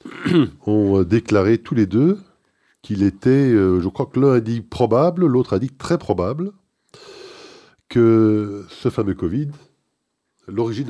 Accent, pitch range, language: French, 95-120 Hz, French